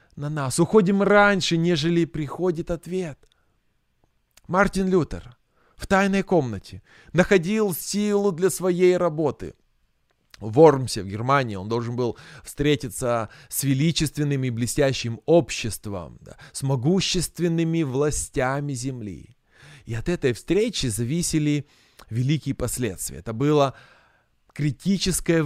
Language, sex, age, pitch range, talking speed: Russian, male, 20-39, 130-170 Hz, 105 wpm